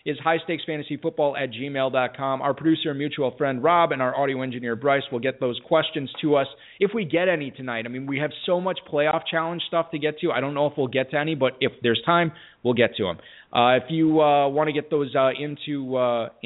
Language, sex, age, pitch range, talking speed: English, male, 20-39, 120-160 Hz, 235 wpm